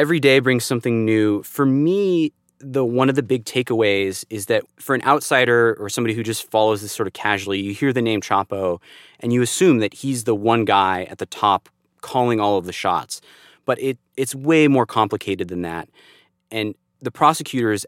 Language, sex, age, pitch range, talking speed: English, male, 30-49, 100-130 Hz, 200 wpm